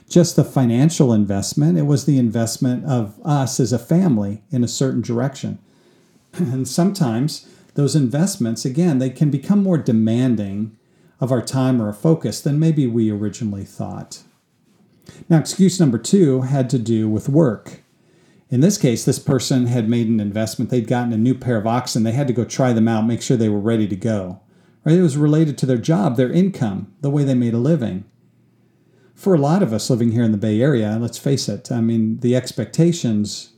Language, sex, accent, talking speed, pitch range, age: English, male, American, 195 wpm, 115-150 Hz, 50-69